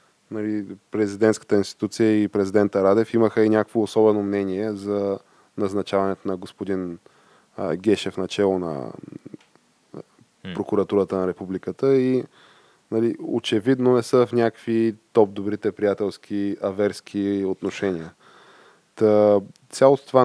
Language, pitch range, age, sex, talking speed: Bulgarian, 95-115 Hz, 20-39, male, 100 wpm